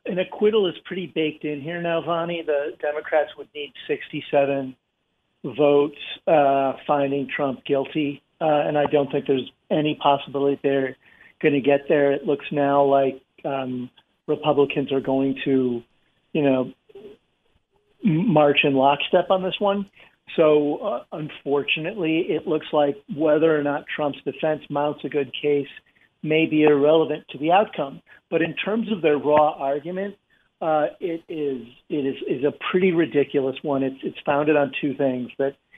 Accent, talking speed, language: American, 160 wpm, English